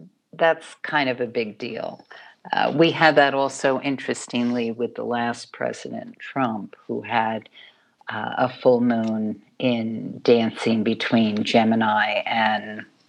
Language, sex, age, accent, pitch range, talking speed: English, female, 50-69, American, 115-140 Hz, 130 wpm